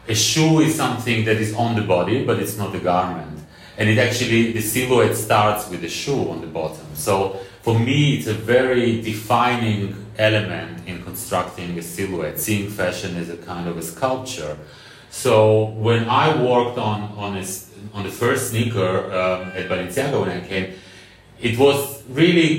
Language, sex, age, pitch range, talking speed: English, male, 30-49, 95-120 Hz, 175 wpm